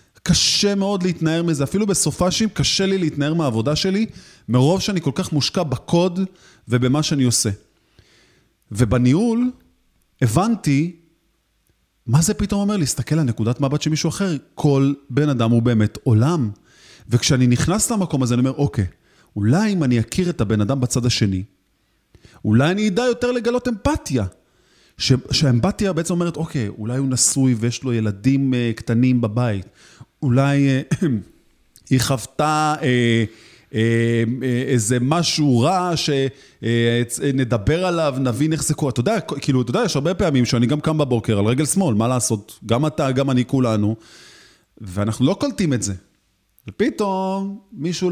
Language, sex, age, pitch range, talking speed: Hebrew, male, 30-49, 115-165 Hz, 140 wpm